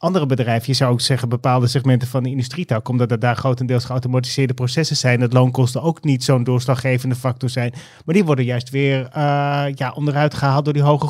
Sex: male